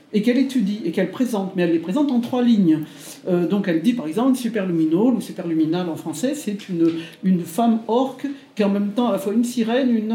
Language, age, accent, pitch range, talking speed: French, 50-69, French, 175-235 Hz, 230 wpm